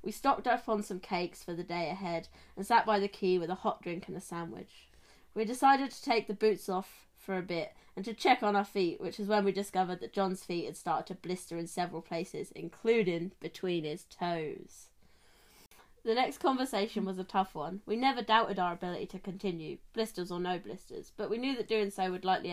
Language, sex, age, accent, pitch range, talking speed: English, female, 20-39, British, 175-220 Hz, 220 wpm